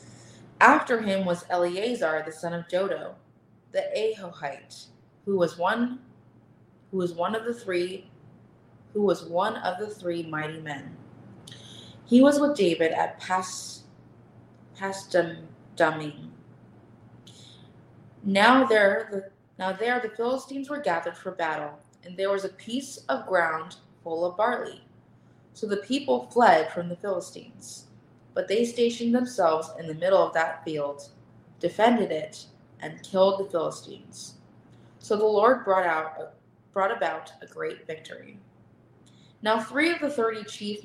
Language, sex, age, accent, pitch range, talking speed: English, female, 20-39, American, 160-220 Hz, 135 wpm